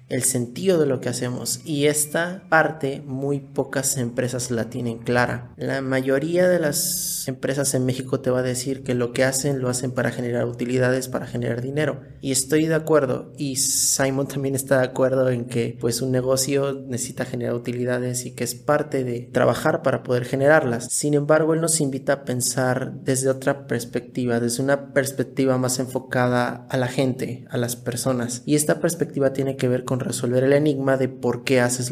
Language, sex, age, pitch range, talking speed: Spanish, male, 30-49, 125-145 Hz, 190 wpm